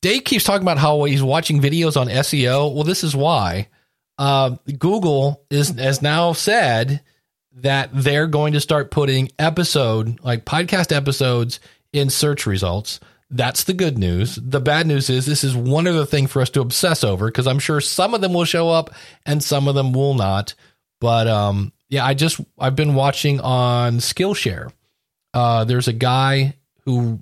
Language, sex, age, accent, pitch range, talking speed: English, male, 40-59, American, 110-145 Hz, 180 wpm